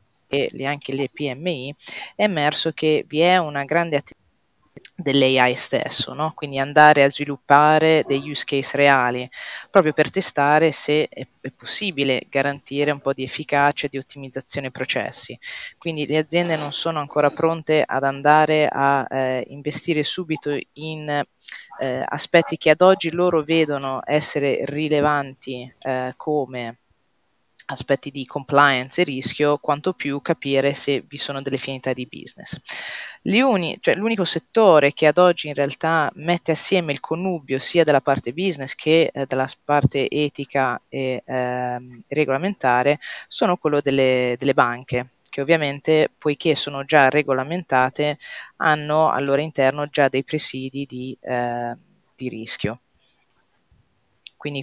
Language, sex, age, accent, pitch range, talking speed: Italian, female, 30-49, native, 135-155 Hz, 140 wpm